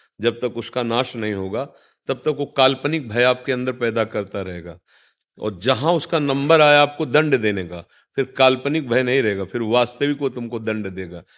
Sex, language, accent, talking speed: male, Hindi, native, 190 wpm